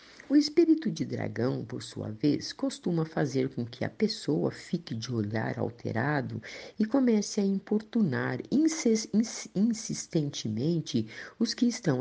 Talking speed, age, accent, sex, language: 125 wpm, 50-69, Brazilian, female, Portuguese